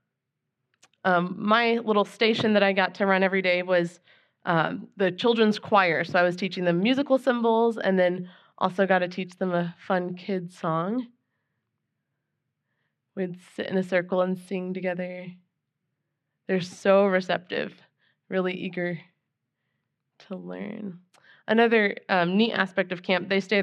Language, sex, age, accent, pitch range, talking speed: English, female, 20-39, American, 175-200 Hz, 145 wpm